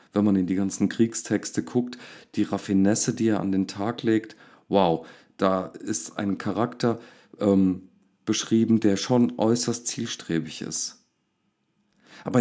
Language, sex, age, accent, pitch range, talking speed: German, male, 40-59, German, 95-120 Hz, 135 wpm